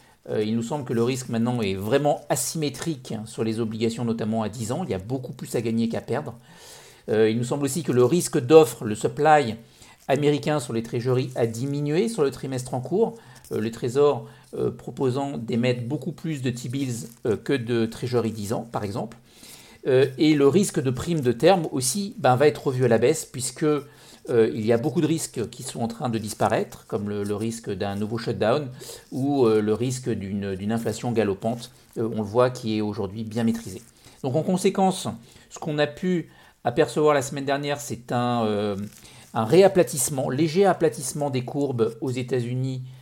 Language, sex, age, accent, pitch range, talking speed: English, male, 50-69, French, 115-145 Hz, 190 wpm